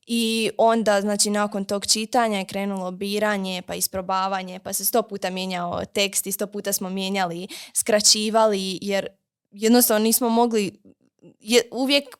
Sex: female